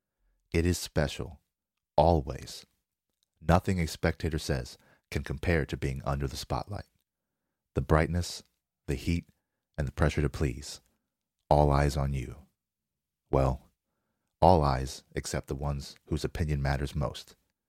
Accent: American